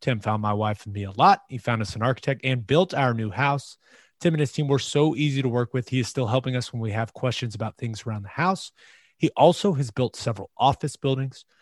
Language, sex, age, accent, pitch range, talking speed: English, male, 30-49, American, 120-145 Hz, 255 wpm